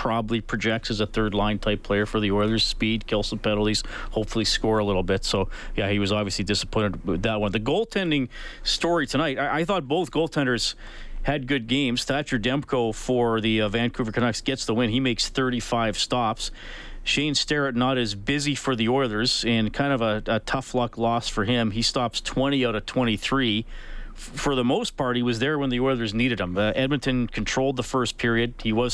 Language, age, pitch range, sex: English, 40-59, 110-130 Hz, male